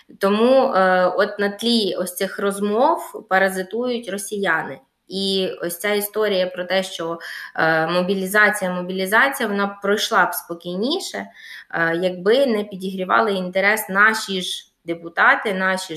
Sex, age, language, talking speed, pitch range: female, 20-39, Ukrainian, 125 wpm, 185-235 Hz